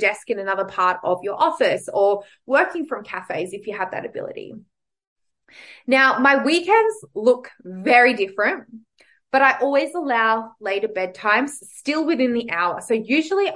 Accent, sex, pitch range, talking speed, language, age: Australian, female, 190-255 Hz, 150 wpm, English, 20-39